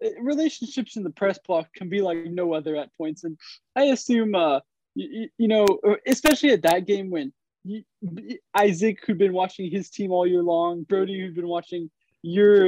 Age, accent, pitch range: 20-39, American, 170-225 Hz